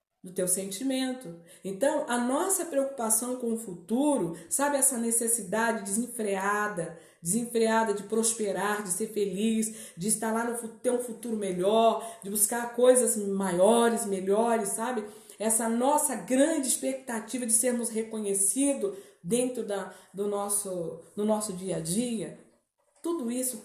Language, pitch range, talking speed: Portuguese, 195-245 Hz, 130 wpm